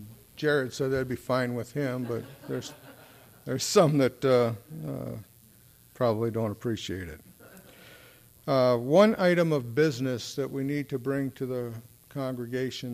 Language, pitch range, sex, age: English, 115-135 Hz, male, 60-79